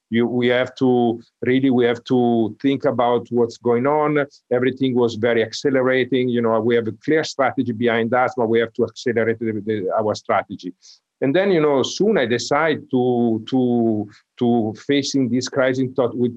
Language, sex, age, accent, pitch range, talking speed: English, male, 50-69, Italian, 115-130 Hz, 180 wpm